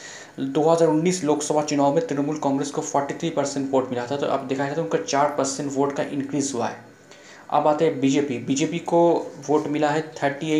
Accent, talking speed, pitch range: native, 205 wpm, 140-155 Hz